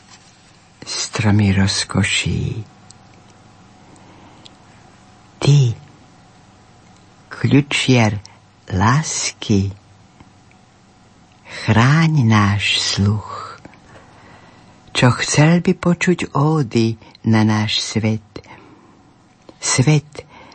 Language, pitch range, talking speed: Slovak, 105-140 Hz, 50 wpm